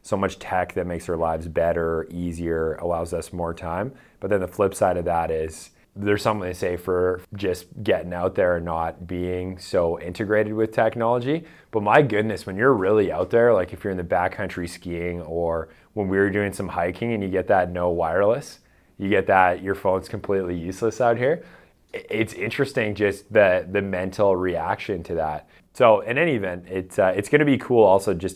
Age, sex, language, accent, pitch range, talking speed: 20-39, male, English, American, 85-105 Hz, 205 wpm